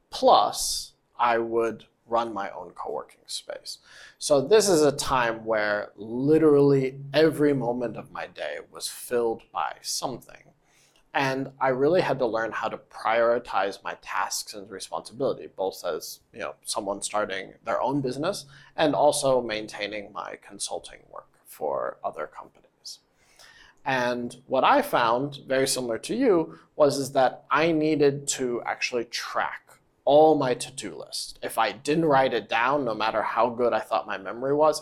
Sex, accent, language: male, American, Chinese